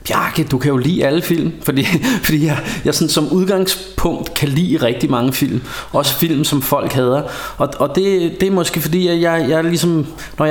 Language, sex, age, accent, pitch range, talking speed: Danish, male, 30-49, native, 130-165 Hz, 205 wpm